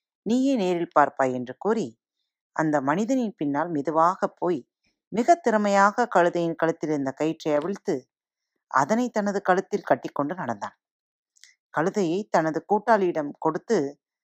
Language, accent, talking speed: Tamil, native, 110 wpm